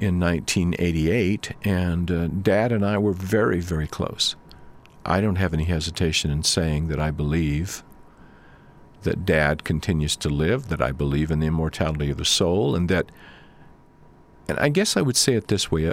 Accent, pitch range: American, 80-105 Hz